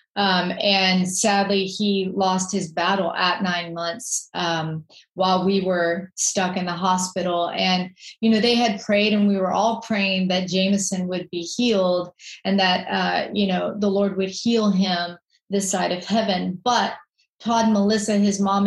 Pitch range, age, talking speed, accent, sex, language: 180-205 Hz, 30-49, 170 wpm, American, female, English